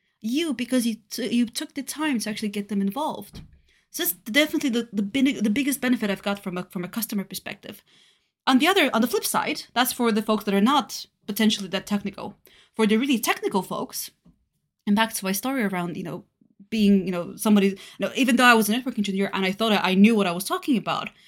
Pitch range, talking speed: 205-260 Hz, 235 wpm